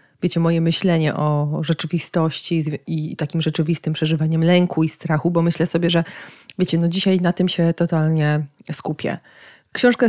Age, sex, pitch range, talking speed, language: 30-49, female, 170-210 Hz, 150 wpm, Polish